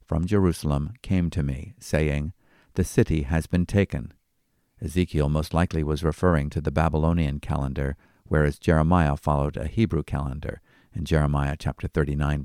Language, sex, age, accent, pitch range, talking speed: English, male, 50-69, American, 75-90 Hz, 145 wpm